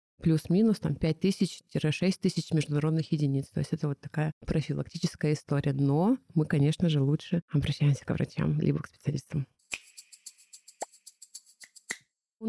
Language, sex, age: Russian, female, 30-49